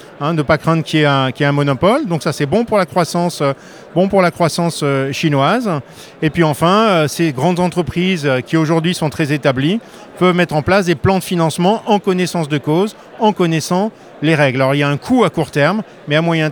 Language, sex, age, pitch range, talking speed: French, male, 40-59, 150-195 Hz, 245 wpm